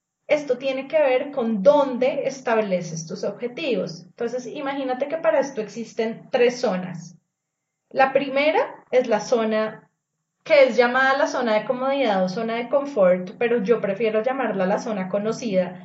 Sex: female